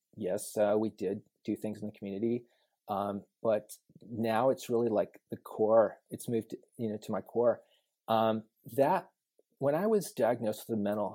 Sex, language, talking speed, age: male, English, 180 wpm, 30-49